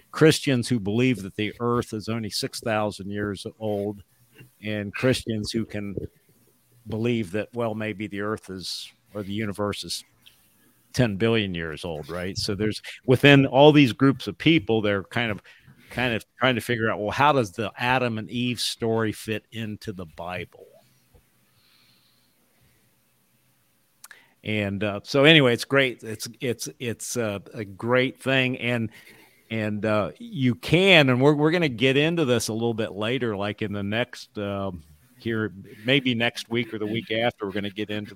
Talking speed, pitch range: 170 wpm, 100-125 Hz